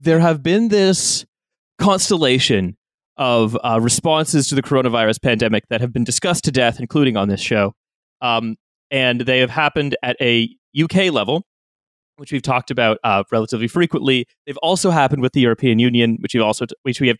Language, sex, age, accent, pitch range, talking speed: English, male, 20-39, American, 120-150 Hz, 180 wpm